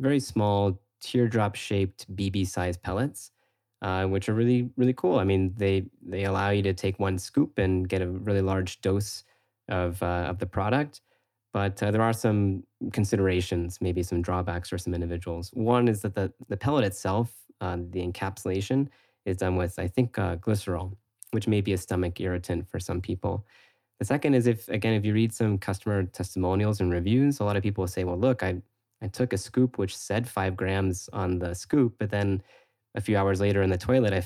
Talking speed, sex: 200 wpm, male